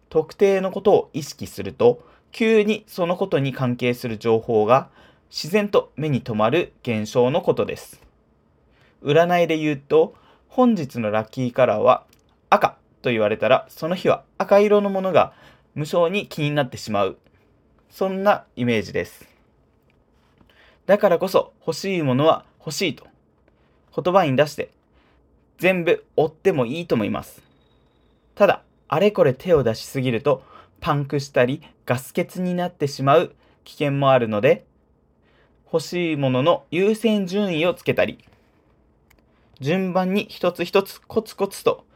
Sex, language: male, Japanese